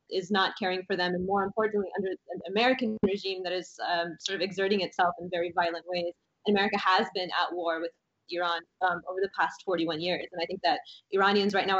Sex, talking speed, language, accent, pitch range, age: female, 225 wpm, English, American, 180-205 Hz, 20-39